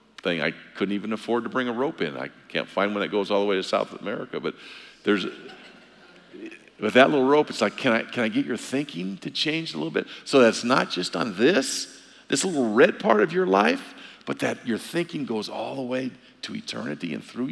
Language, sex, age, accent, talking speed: English, male, 50-69, American, 230 wpm